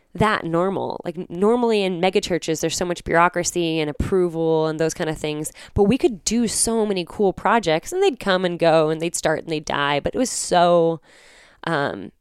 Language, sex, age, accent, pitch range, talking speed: English, female, 10-29, American, 150-180 Hz, 205 wpm